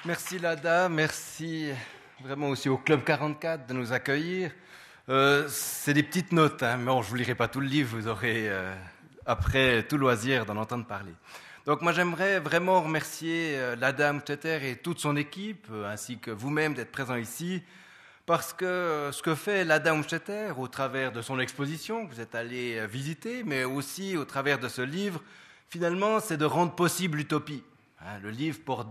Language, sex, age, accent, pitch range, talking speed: French, male, 30-49, French, 130-175 Hz, 190 wpm